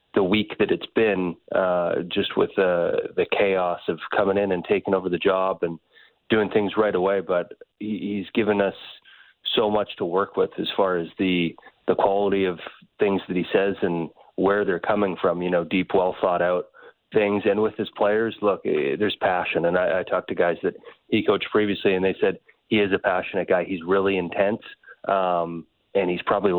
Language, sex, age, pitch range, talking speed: English, male, 30-49, 90-105 Hz, 200 wpm